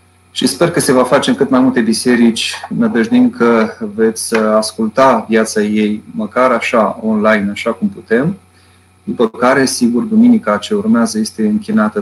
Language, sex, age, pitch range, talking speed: Romanian, male, 30-49, 100-155 Hz, 155 wpm